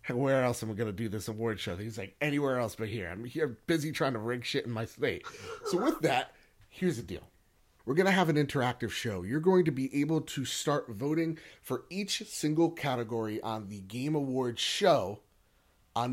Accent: American